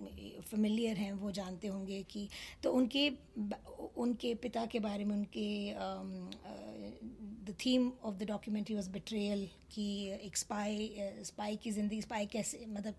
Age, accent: 20-39, native